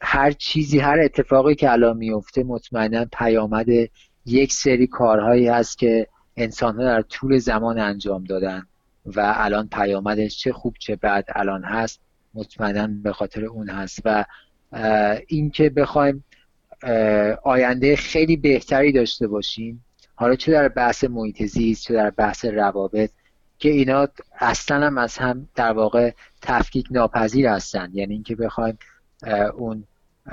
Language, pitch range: Persian, 105-135 Hz